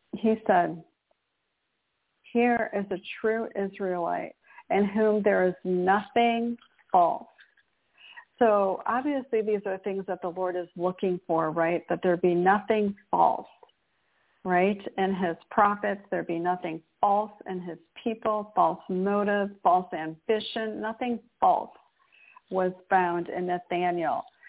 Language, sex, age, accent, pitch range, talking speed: English, female, 50-69, American, 180-225 Hz, 125 wpm